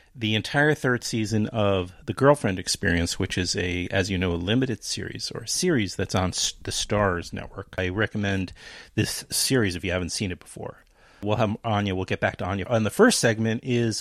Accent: American